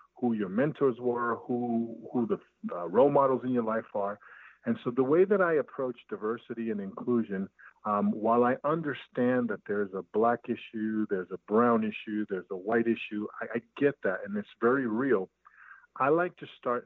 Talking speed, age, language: 190 wpm, 50-69, English